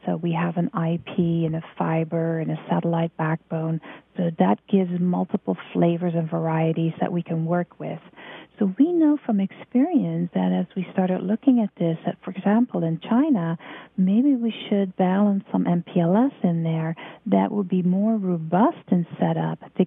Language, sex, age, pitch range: English, female, 40-59, 165-205 Hz